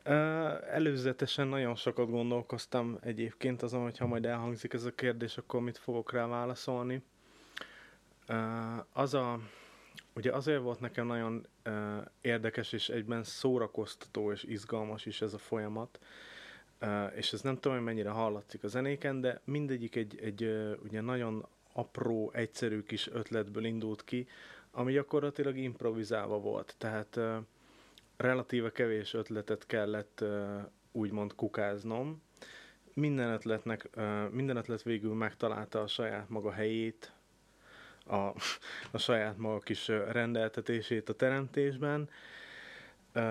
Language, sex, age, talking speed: Hungarian, male, 30-49, 125 wpm